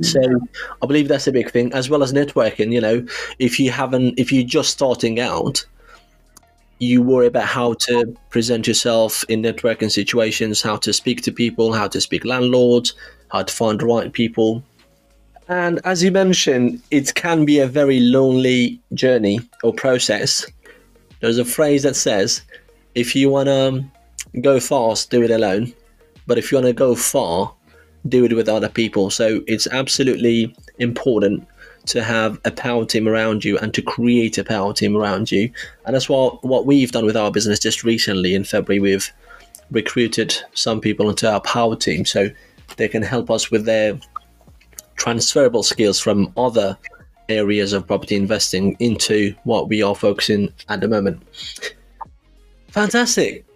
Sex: male